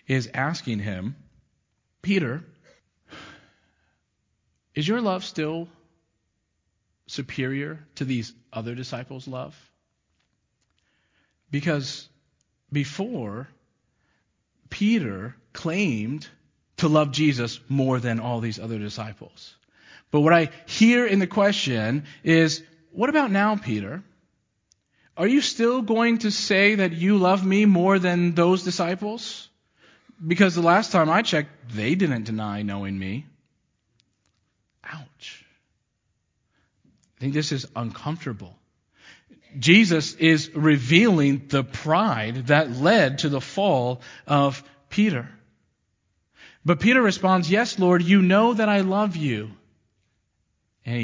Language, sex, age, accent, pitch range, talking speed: English, male, 40-59, American, 115-180 Hz, 110 wpm